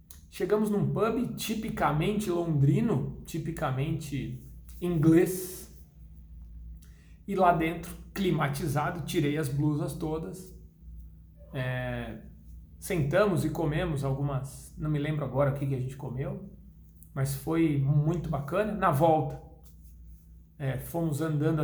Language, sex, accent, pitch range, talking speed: Portuguese, male, Brazilian, 125-170 Hz, 100 wpm